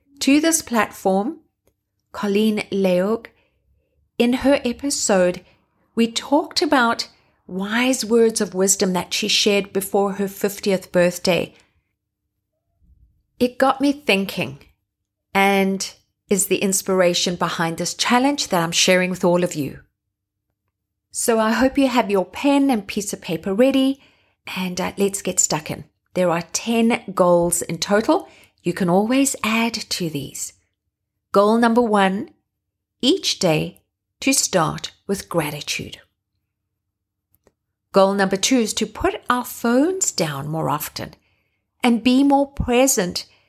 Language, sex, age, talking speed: English, female, 30-49, 130 wpm